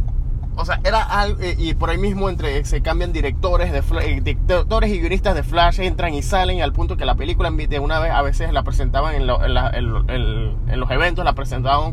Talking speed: 230 wpm